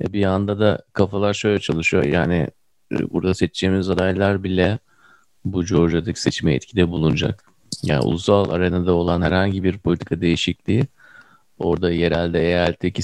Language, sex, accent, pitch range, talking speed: Turkish, male, native, 85-105 Hz, 125 wpm